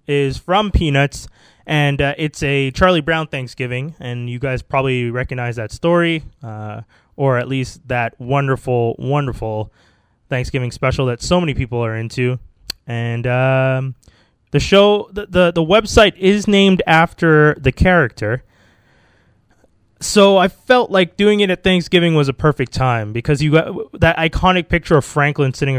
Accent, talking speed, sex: American, 155 wpm, male